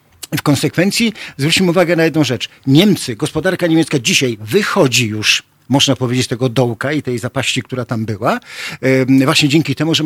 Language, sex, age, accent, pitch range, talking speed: Polish, male, 50-69, native, 120-140 Hz, 165 wpm